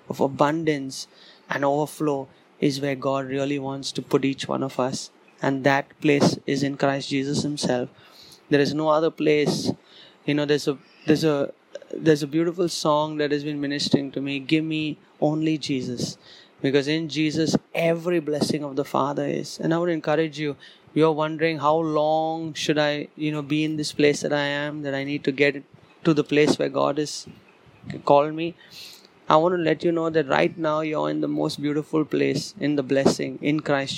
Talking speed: 195 wpm